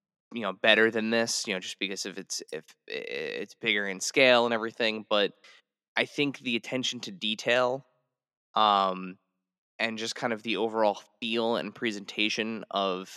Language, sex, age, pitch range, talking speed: English, male, 20-39, 95-120 Hz, 165 wpm